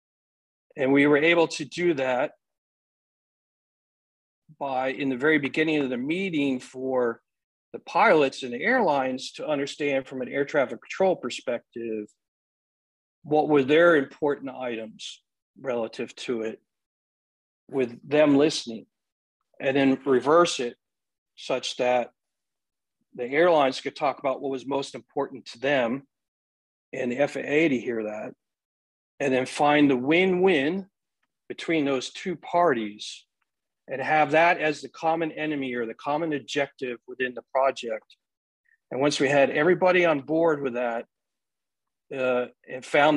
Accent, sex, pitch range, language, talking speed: American, male, 125-155 Hz, English, 135 wpm